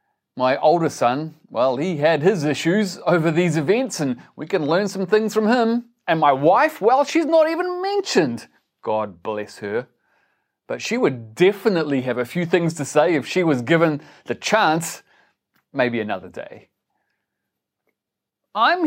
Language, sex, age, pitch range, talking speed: English, male, 30-49, 135-210 Hz, 160 wpm